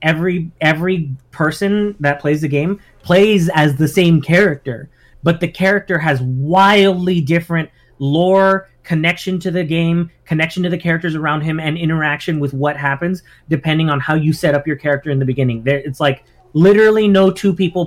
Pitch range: 145-170 Hz